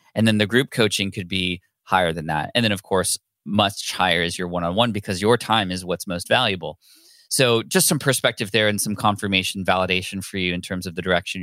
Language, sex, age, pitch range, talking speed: English, male, 20-39, 95-110 Hz, 220 wpm